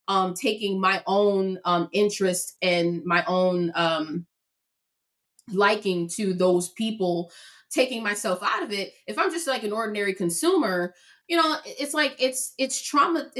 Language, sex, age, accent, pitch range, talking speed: English, female, 20-39, American, 175-220 Hz, 150 wpm